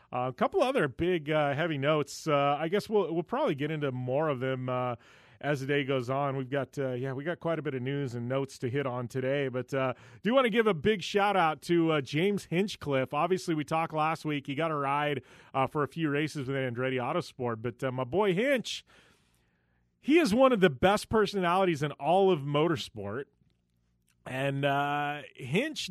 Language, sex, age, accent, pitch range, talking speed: English, male, 30-49, American, 135-180 Hz, 215 wpm